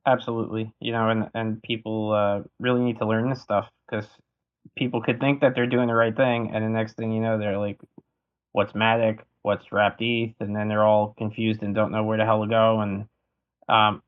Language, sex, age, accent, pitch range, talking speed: English, male, 20-39, American, 105-115 Hz, 215 wpm